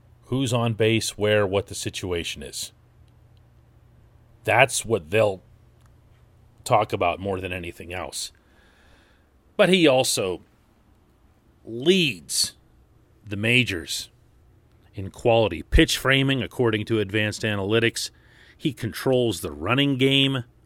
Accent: American